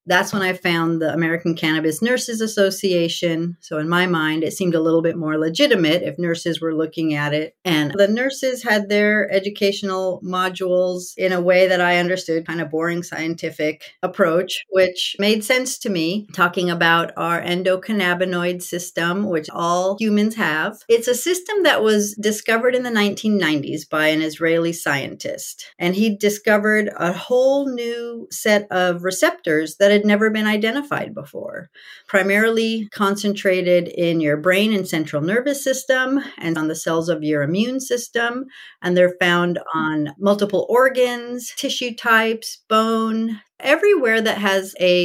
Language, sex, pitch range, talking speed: English, female, 170-215 Hz, 155 wpm